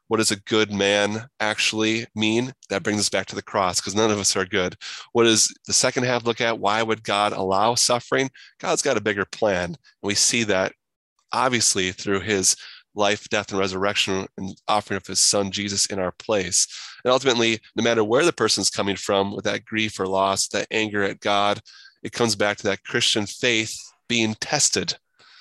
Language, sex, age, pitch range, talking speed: English, male, 20-39, 100-110 Hz, 200 wpm